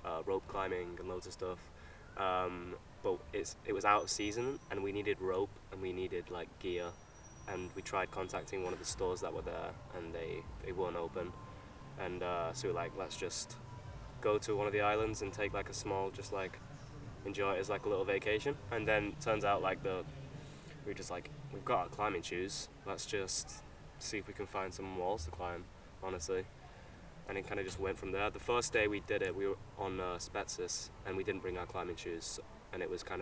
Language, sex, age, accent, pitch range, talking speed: English, male, 10-29, British, 90-120 Hz, 225 wpm